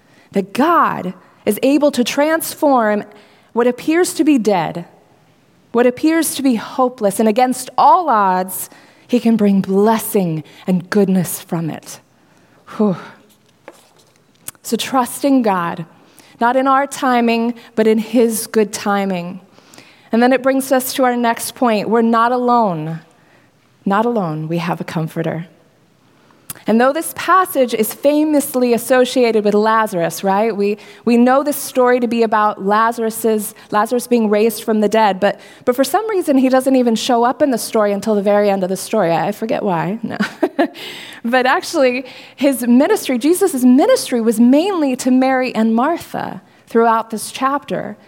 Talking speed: 155 wpm